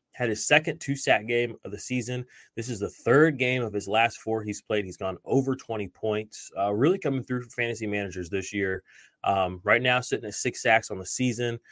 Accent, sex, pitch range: American, male, 105-130 Hz